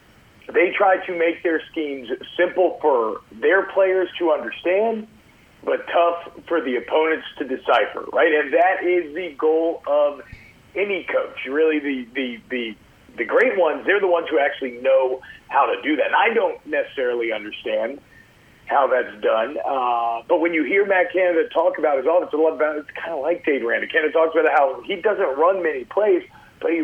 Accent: American